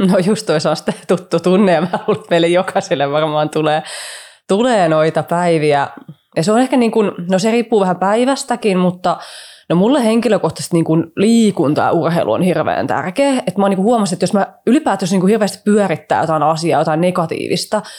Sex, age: female, 20-39